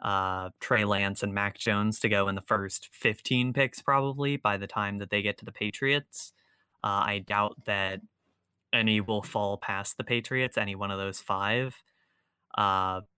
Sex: male